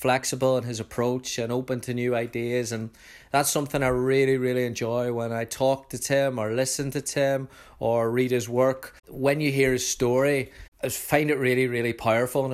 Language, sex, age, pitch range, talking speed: English, male, 20-39, 120-135 Hz, 195 wpm